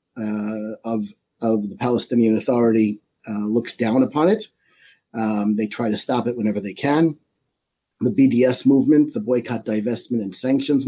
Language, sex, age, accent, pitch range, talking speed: English, male, 40-59, American, 110-135 Hz, 155 wpm